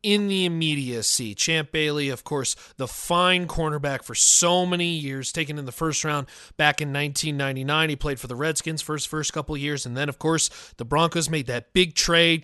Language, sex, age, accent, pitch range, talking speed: English, male, 30-49, American, 150-180 Hz, 205 wpm